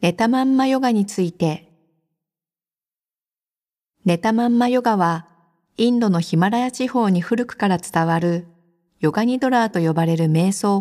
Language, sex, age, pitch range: Japanese, female, 50-69, 175-225 Hz